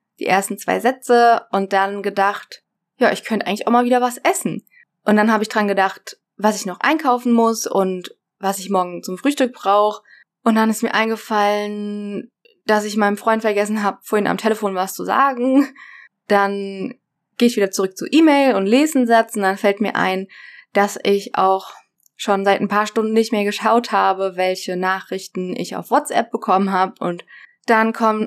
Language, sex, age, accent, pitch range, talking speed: German, female, 20-39, German, 195-230 Hz, 190 wpm